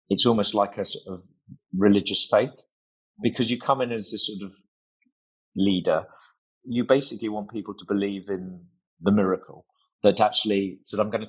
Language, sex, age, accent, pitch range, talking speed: English, male, 30-49, British, 100-130 Hz, 170 wpm